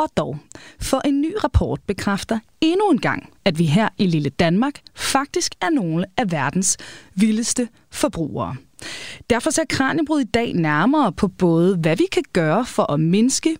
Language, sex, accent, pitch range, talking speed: Danish, female, native, 185-285 Hz, 170 wpm